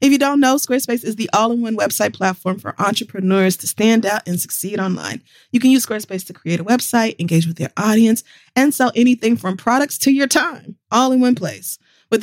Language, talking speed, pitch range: English, 210 wpm, 180-240 Hz